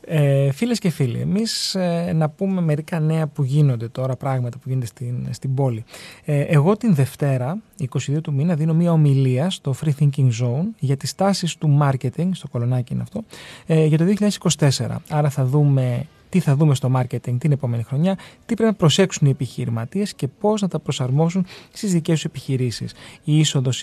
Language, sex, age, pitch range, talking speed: Greek, male, 30-49, 135-175 Hz, 185 wpm